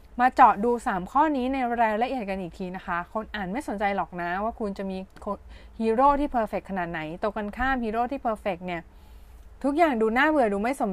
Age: 20-39